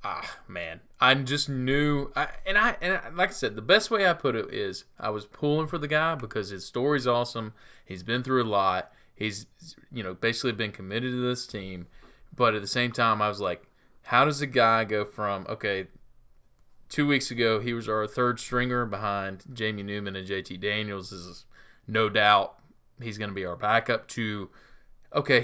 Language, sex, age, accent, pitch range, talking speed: English, male, 20-39, American, 100-125 Hz, 200 wpm